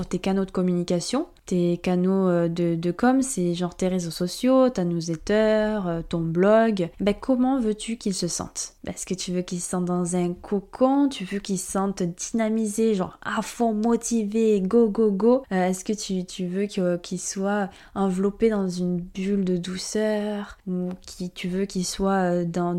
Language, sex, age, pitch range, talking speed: French, female, 20-39, 180-220 Hz, 185 wpm